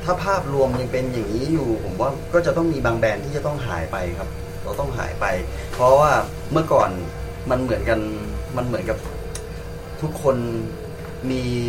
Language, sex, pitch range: Thai, male, 95-135 Hz